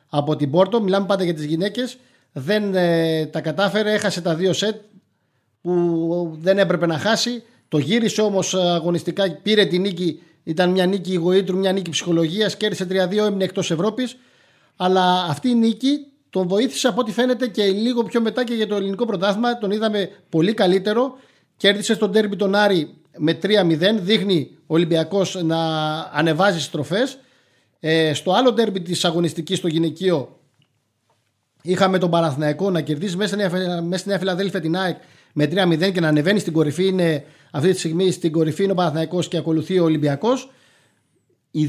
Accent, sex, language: native, male, Greek